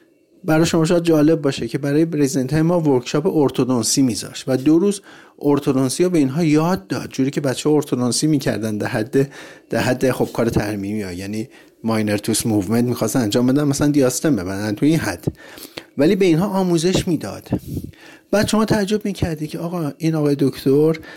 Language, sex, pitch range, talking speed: Persian, male, 125-165 Hz, 165 wpm